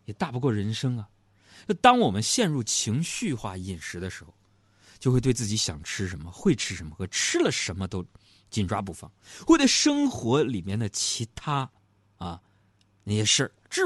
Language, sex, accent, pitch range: Chinese, male, native, 100-130 Hz